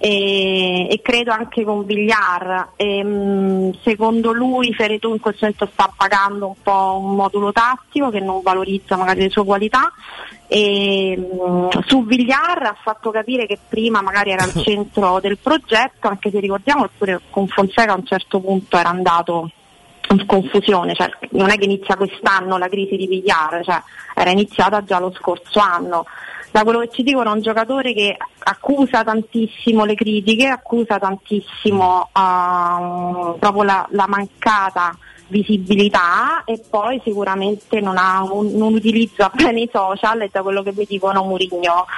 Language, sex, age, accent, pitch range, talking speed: Italian, female, 30-49, native, 185-215 Hz, 155 wpm